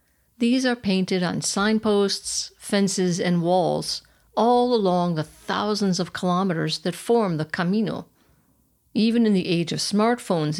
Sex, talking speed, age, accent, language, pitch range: female, 135 wpm, 60-79, American, English, 170-215 Hz